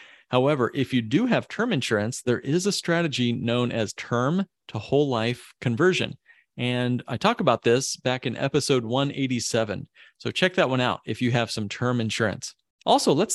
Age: 40-59